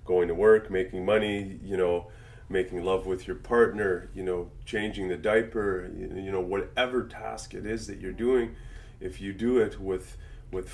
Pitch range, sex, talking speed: 90-110 Hz, male, 180 wpm